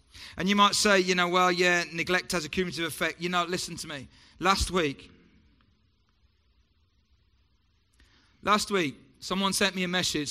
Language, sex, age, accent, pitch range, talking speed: English, male, 30-49, British, 145-185 Hz, 155 wpm